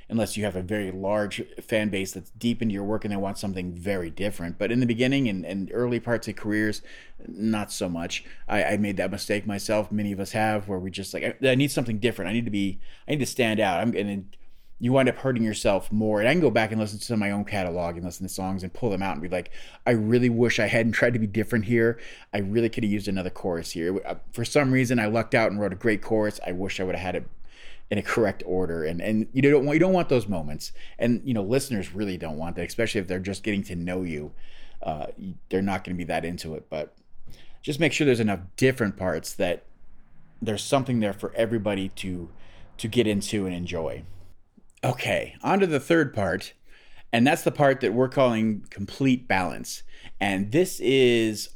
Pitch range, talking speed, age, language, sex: 95-120 Hz, 235 wpm, 30-49, English, male